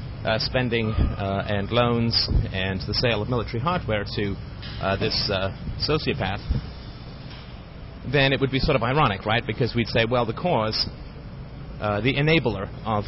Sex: male